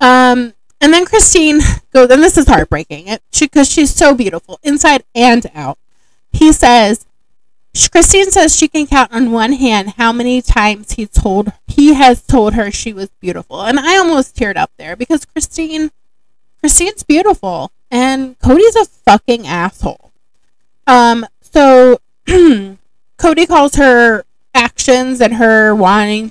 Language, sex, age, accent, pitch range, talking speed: English, female, 20-39, American, 200-275 Hz, 140 wpm